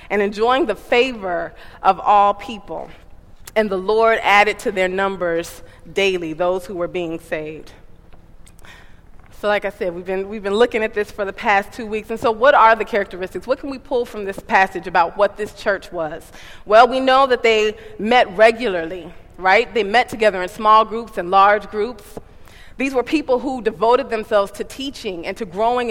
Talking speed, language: 190 wpm, English